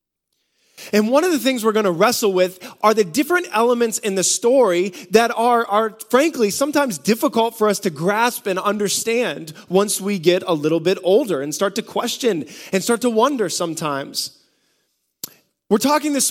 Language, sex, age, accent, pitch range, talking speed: English, male, 20-39, American, 165-210 Hz, 175 wpm